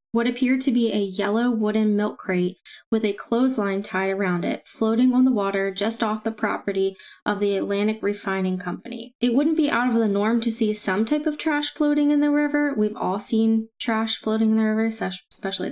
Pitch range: 205-250 Hz